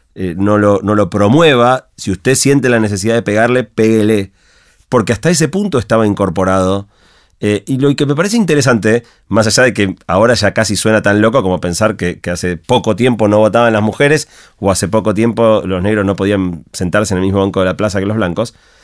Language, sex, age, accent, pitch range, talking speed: Spanish, male, 30-49, Argentinian, 95-125 Hz, 215 wpm